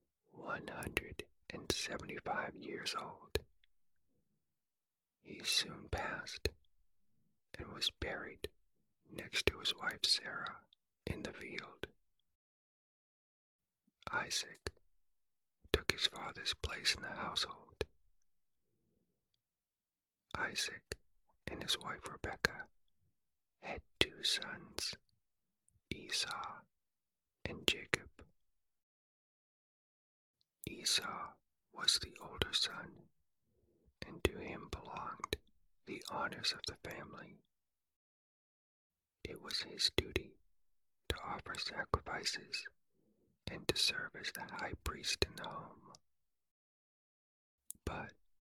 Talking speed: 85 wpm